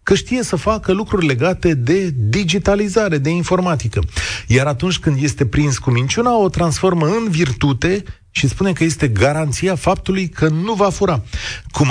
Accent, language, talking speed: native, Romanian, 160 wpm